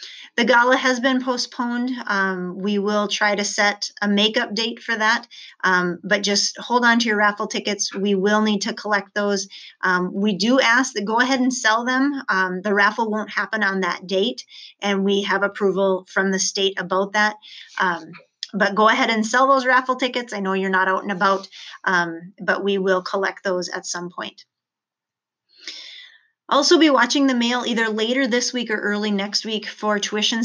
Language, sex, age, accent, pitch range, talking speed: English, female, 30-49, American, 195-235 Hz, 195 wpm